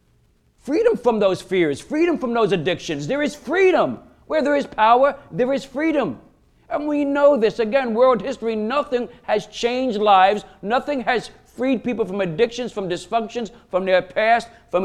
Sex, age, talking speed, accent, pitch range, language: male, 50-69, 165 wpm, American, 185-255 Hz, English